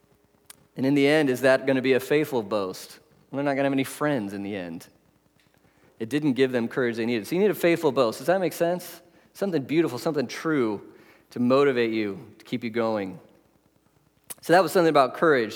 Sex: male